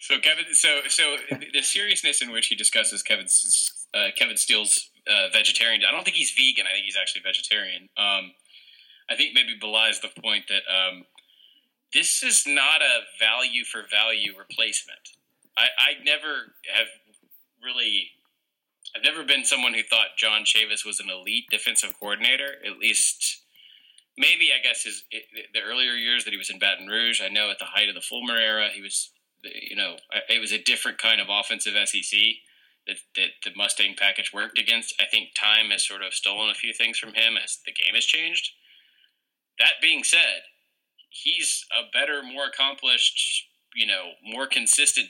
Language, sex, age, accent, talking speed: English, male, 20-39, American, 180 wpm